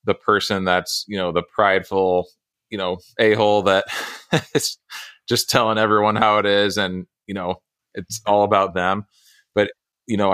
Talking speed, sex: 170 wpm, male